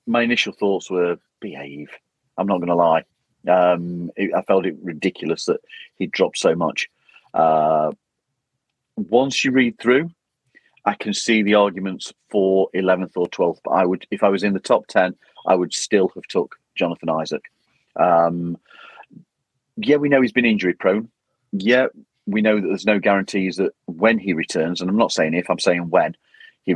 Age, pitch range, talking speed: 40-59, 95-130 Hz, 180 wpm